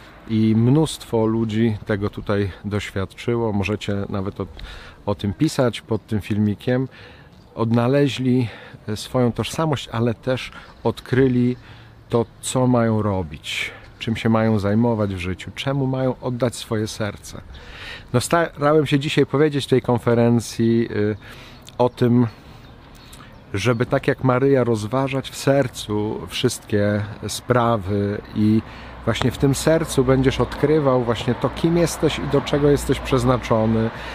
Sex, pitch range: male, 105-130 Hz